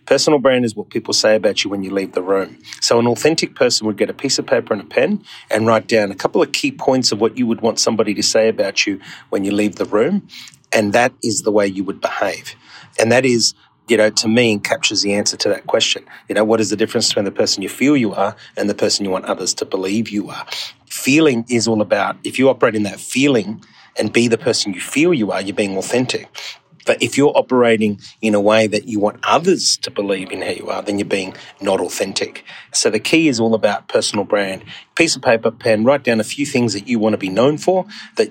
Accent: Australian